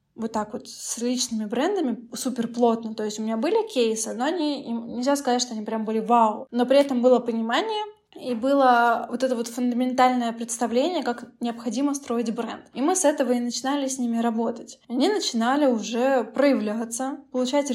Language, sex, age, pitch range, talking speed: Russian, female, 20-39, 230-265 Hz, 185 wpm